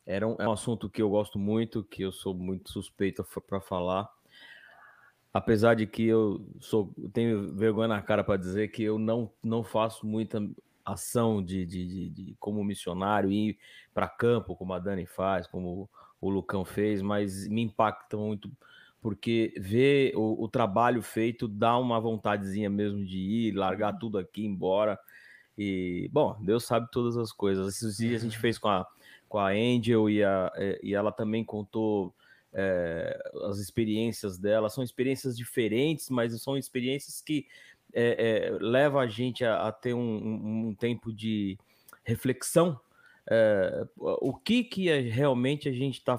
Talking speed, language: 165 wpm, Portuguese